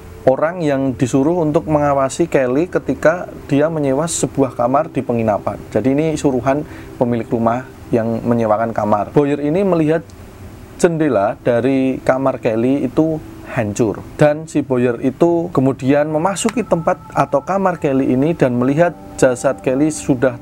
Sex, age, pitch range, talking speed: male, 30-49, 125-155 Hz, 135 wpm